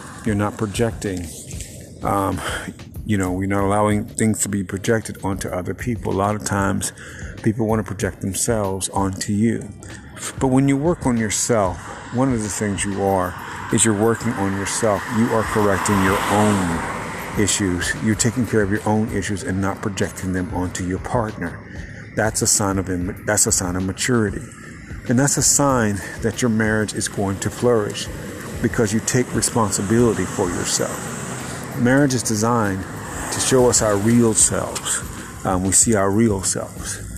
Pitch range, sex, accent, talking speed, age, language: 95-110 Hz, male, American, 170 wpm, 50-69, English